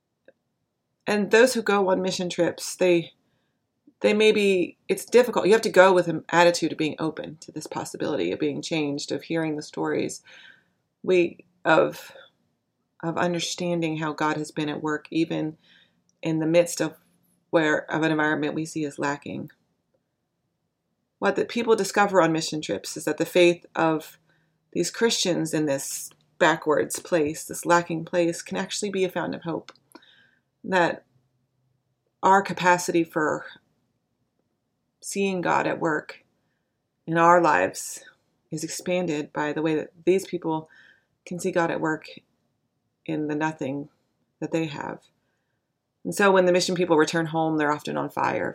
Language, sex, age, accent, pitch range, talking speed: English, female, 30-49, American, 155-180 Hz, 155 wpm